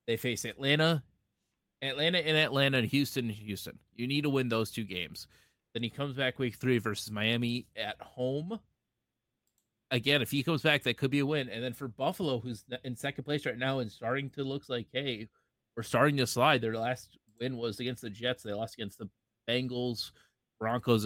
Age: 30-49